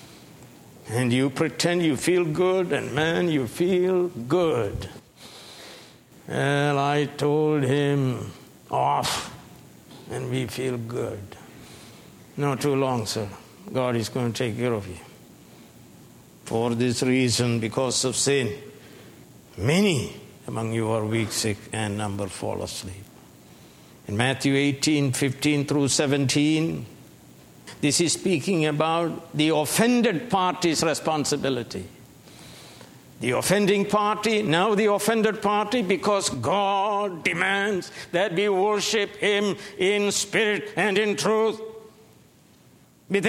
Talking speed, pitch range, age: 115 wpm, 130-200 Hz, 60-79